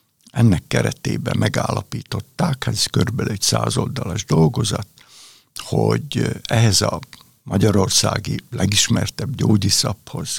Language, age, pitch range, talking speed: Hungarian, 60-79, 100-125 Hz, 85 wpm